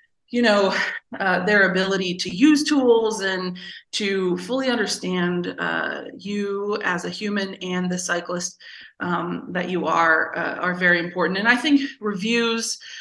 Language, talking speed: English, 150 wpm